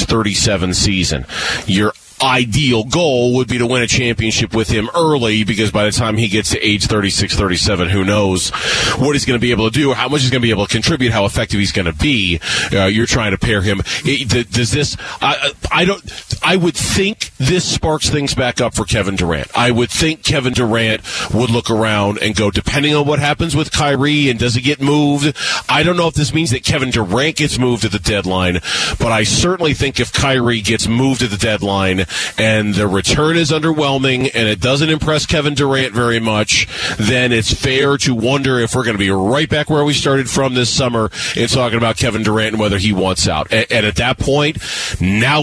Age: 30-49